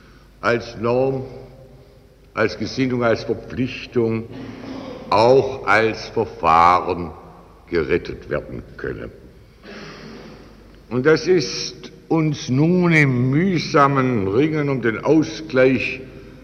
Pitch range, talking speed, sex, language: 105-135 Hz, 85 wpm, male, German